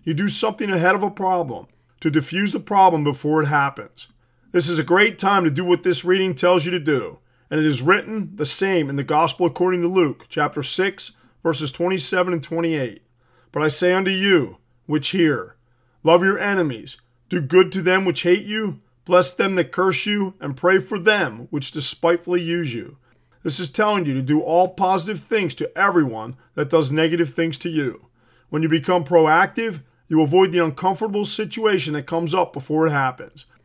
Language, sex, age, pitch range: English, male, 40-59, 150-190 Hz